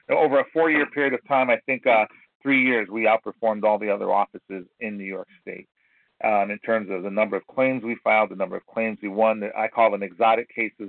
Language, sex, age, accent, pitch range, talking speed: English, male, 40-59, American, 110-135 Hz, 230 wpm